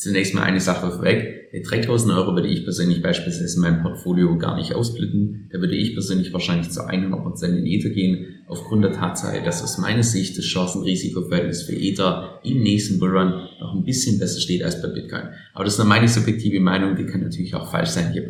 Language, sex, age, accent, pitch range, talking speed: German, male, 30-49, German, 90-115 Hz, 210 wpm